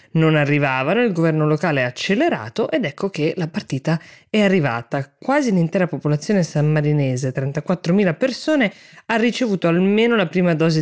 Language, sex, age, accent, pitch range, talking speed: Italian, female, 20-39, native, 145-190 Hz, 145 wpm